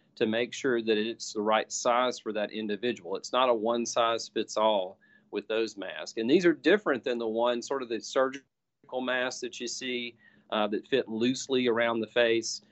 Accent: American